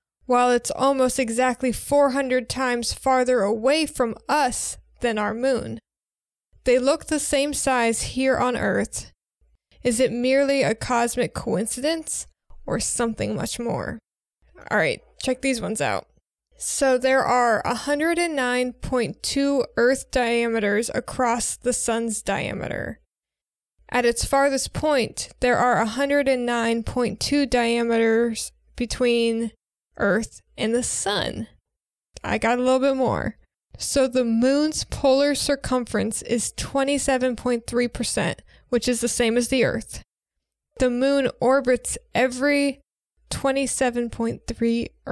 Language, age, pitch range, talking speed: English, 20-39, 235-275 Hz, 125 wpm